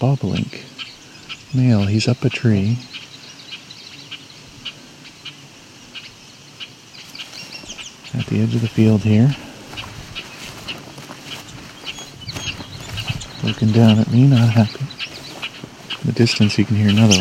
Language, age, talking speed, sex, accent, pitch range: English, 50-69, 90 wpm, male, American, 105-135 Hz